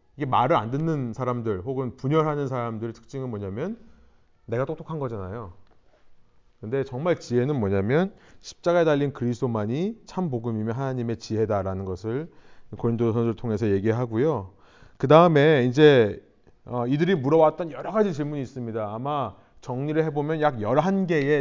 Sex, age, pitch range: male, 30-49, 110-165 Hz